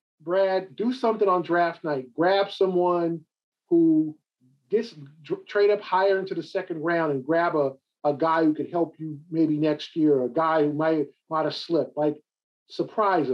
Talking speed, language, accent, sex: 170 wpm, English, American, male